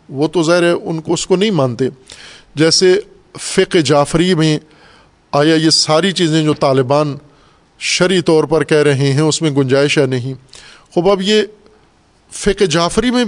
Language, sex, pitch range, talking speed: Urdu, male, 145-180 Hz, 165 wpm